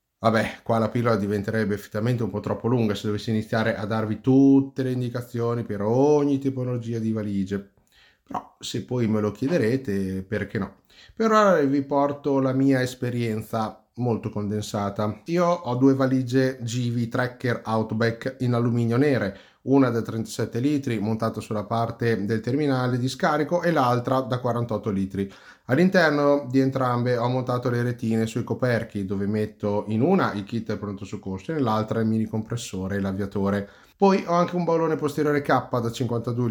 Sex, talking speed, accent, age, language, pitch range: male, 165 wpm, native, 30-49, Italian, 105-125 Hz